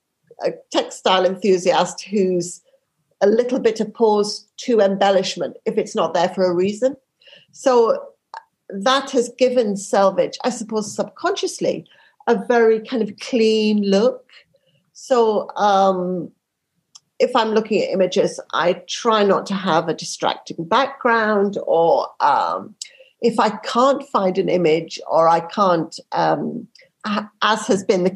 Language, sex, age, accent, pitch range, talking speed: English, female, 50-69, British, 190-245 Hz, 130 wpm